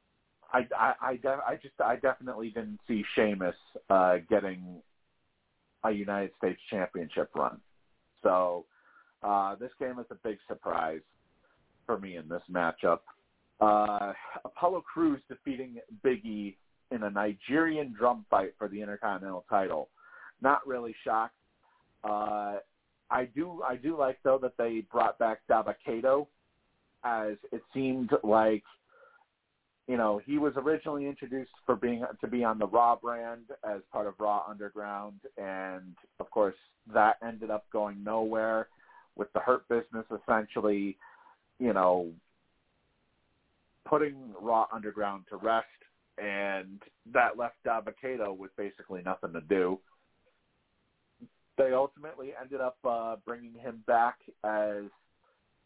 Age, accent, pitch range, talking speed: 40-59, American, 100-125 Hz, 130 wpm